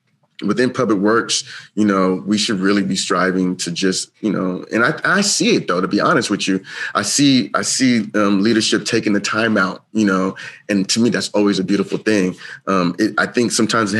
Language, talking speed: English, 220 wpm